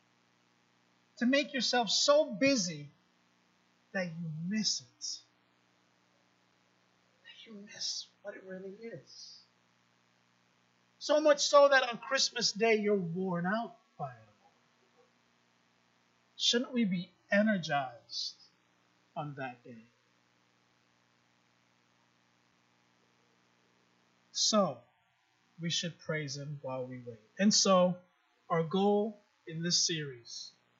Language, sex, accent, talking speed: English, male, American, 95 wpm